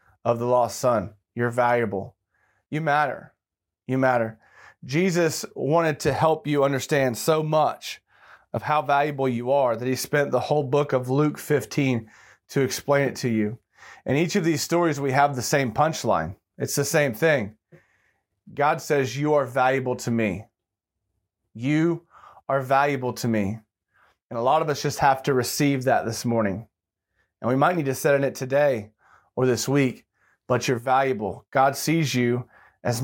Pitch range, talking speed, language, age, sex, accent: 120-140 Hz, 170 wpm, English, 30-49, male, American